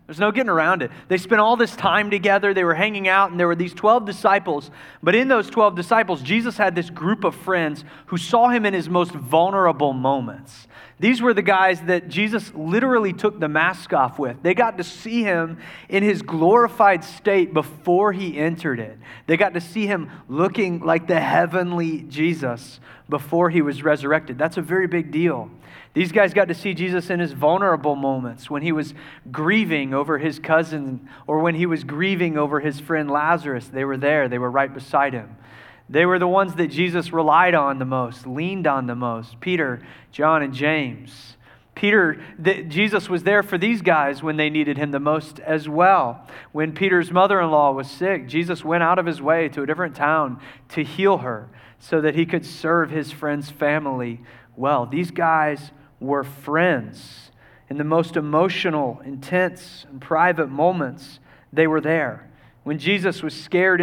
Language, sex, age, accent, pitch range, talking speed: English, male, 30-49, American, 145-185 Hz, 185 wpm